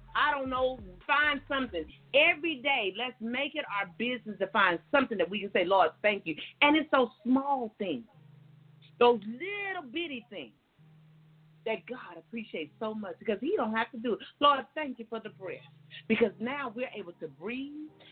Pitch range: 190-275 Hz